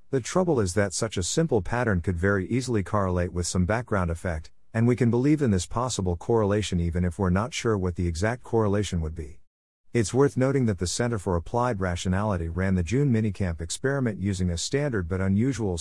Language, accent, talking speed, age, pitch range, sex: English, American, 205 wpm, 50-69, 90-115 Hz, male